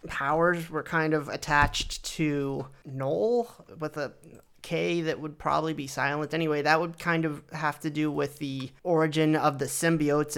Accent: American